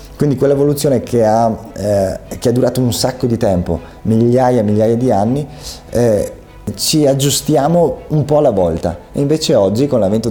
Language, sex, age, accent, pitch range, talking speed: Italian, male, 30-49, native, 95-120 Hz, 170 wpm